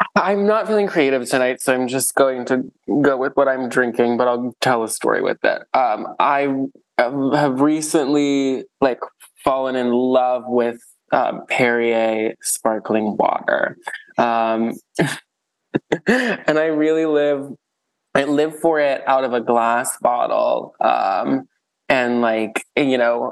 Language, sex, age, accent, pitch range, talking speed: English, male, 20-39, American, 120-145 Hz, 135 wpm